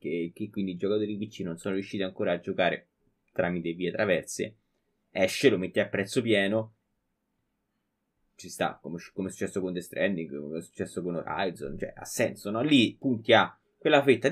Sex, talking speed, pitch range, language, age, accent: male, 190 wpm, 95-130 Hz, Italian, 20-39, native